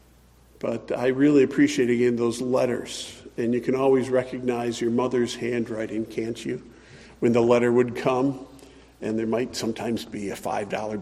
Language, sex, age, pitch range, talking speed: English, male, 50-69, 120-145 Hz, 160 wpm